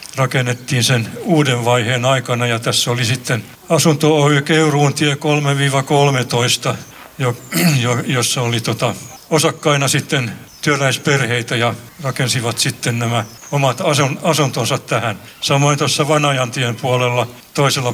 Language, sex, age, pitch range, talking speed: Finnish, male, 60-79, 125-155 Hz, 105 wpm